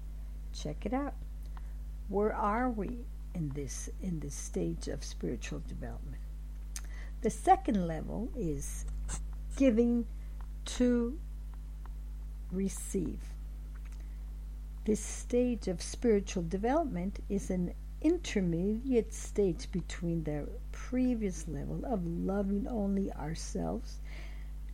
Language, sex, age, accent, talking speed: English, female, 60-79, American, 90 wpm